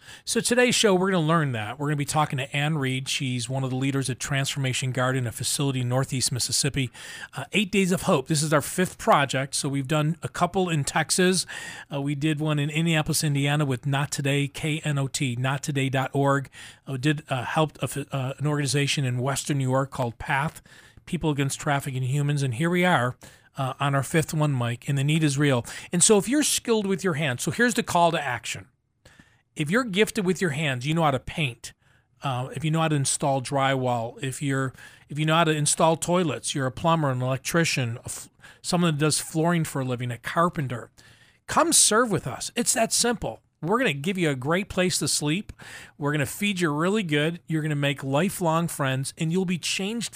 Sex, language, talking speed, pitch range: male, English, 220 wpm, 135-170 Hz